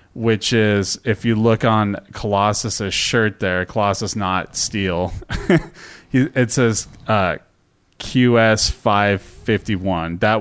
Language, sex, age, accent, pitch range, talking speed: English, male, 30-49, American, 95-115 Hz, 105 wpm